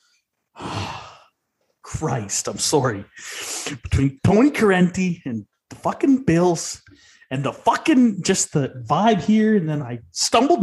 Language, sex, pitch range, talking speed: English, male, 125-165 Hz, 120 wpm